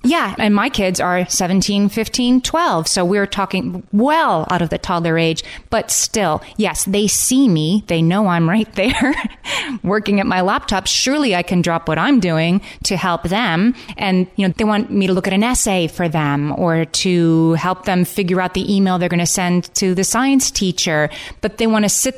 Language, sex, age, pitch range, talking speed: English, female, 30-49, 160-205 Hz, 205 wpm